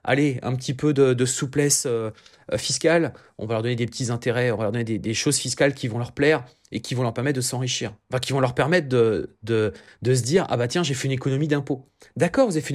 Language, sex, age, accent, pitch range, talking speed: French, male, 30-49, French, 120-170 Hz, 280 wpm